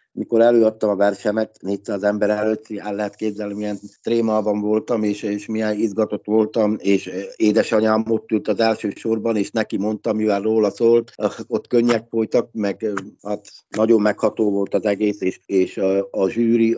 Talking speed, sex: 170 wpm, male